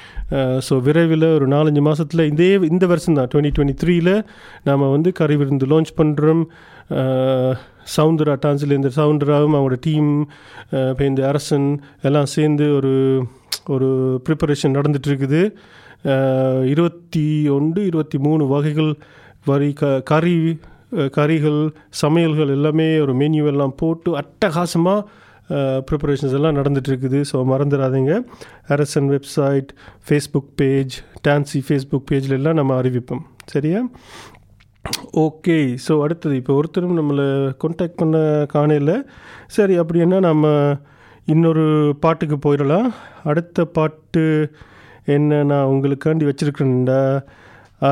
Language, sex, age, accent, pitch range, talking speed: Tamil, male, 30-49, native, 135-160 Hz, 105 wpm